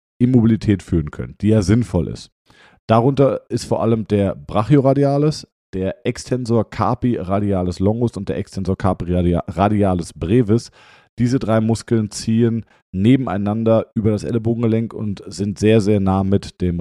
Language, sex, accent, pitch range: German, male, German, 95-120 Hz